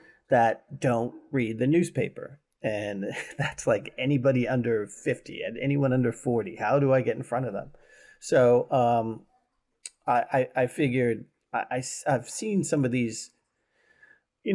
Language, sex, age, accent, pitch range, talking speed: English, male, 30-49, American, 115-145 Hz, 145 wpm